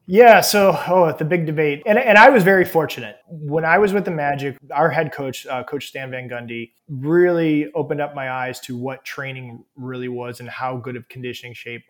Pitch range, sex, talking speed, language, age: 125-155 Hz, male, 210 wpm, English, 20-39